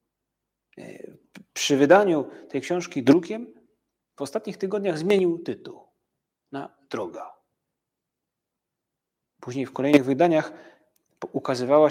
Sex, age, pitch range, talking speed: male, 40-59, 130-170 Hz, 85 wpm